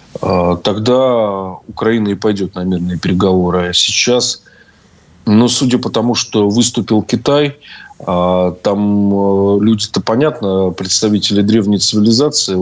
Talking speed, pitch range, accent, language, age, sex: 100 wpm, 95-110 Hz, native, Russian, 20-39, male